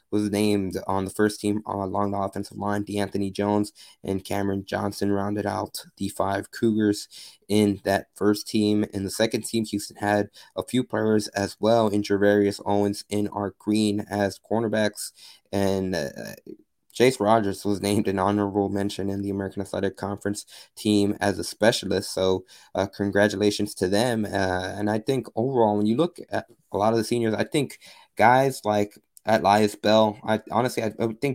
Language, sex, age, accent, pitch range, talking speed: English, male, 20-39, American, 100-110 Hz, 170 wpm